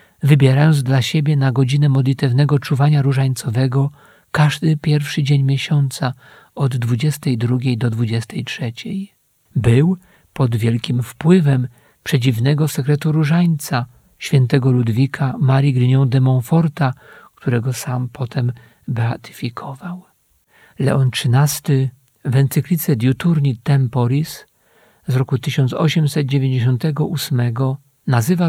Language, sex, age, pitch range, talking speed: Polish, male, 50-69, 130-150 Hz, 90 wpm